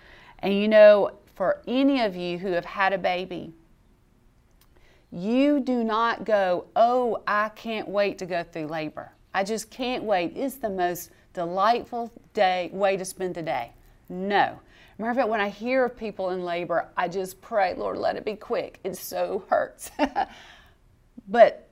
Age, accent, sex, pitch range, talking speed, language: 40-59, American, female, 180-255 Hz, 165 wpm, English